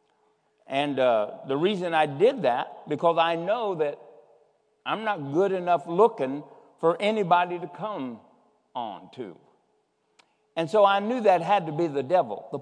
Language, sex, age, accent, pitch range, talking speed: English, male, 60-79, American, 145-205 Hz, 155 wpm